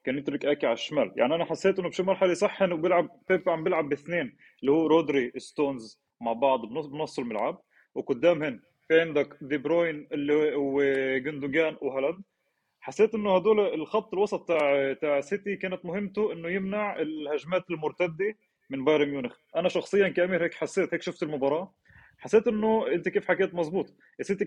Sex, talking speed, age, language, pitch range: male, 155 wpm, 20-39, Arabic, 155-200 Hz